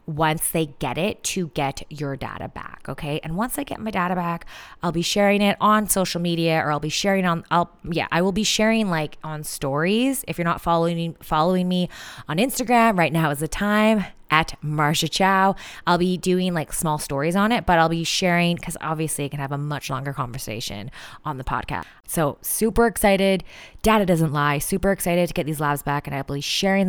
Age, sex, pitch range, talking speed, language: 20-39, female, 155-195 Hz, 210 wpm, English